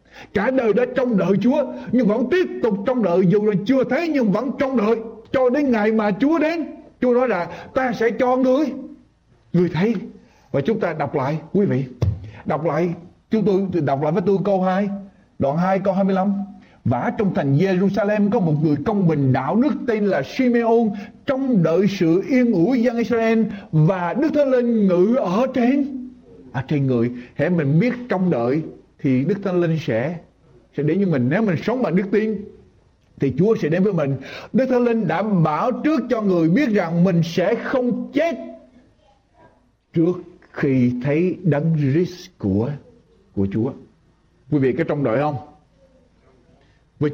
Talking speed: 185 wpm